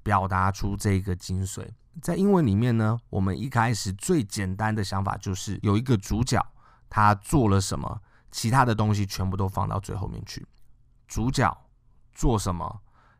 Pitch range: 95-120 Hz